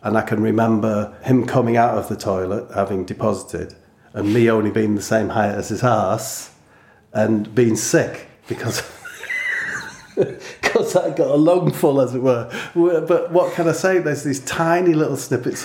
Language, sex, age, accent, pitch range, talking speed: English, male, 40-59, British, 100-120 Hz, 170 wpm